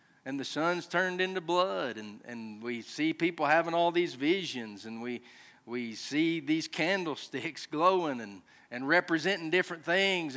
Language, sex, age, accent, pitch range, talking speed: English, male, 40-59, American, 155-200 Hz, 155 wpm